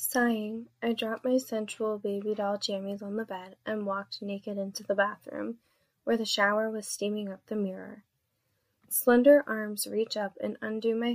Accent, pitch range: American, 200-230 Hz